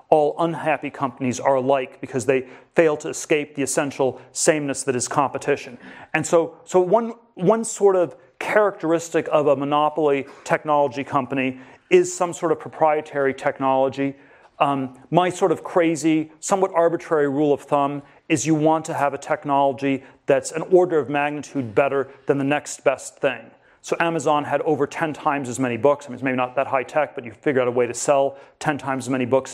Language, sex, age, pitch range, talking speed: English, male, 40-59, 135-160 Hz, 190 wpm